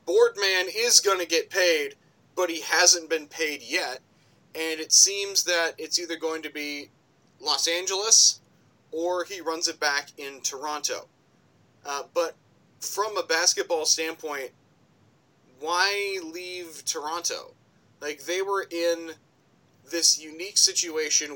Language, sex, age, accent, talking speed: English, male, 30-49, American, 130 wpm